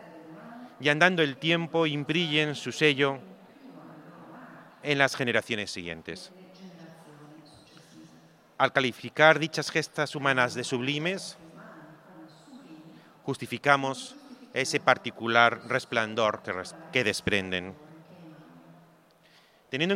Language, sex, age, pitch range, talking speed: Italian, male, 40-59, 130-170 Hz, 75 wpm